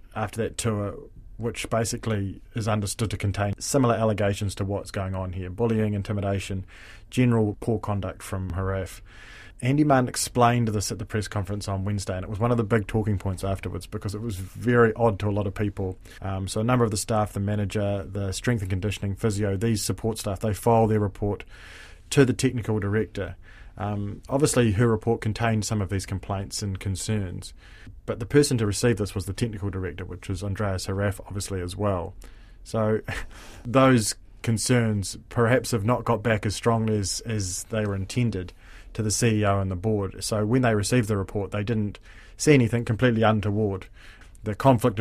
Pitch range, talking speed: 95-115 Hz, 190 wpm